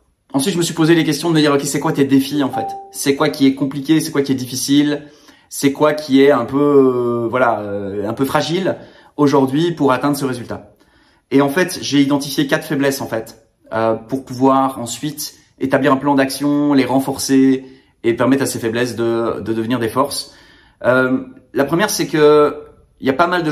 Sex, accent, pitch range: male, French, 125-145 Hz